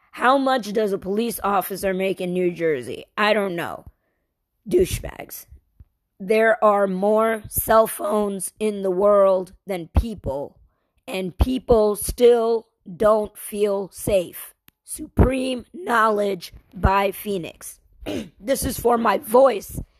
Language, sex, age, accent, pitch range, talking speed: English, female, 20-39, American, 190-255 Hz, 115 wpm